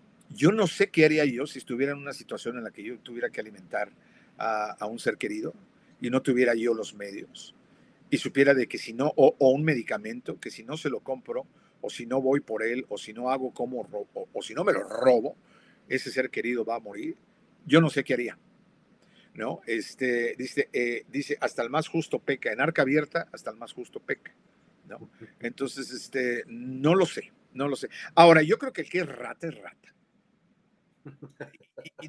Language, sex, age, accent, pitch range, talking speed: Spanish, male, 50-69, Mexican, 125-180 Hz, 210 wpm